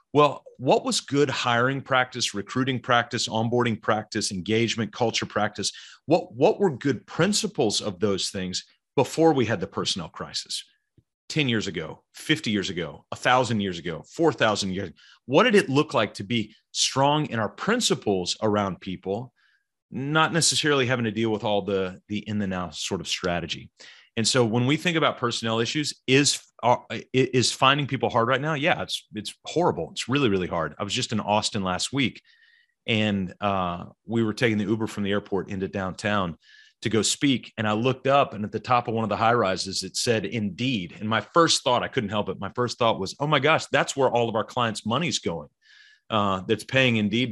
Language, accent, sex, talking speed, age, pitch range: English, American, male, 200 wpm, 30-49, 105-135 Hz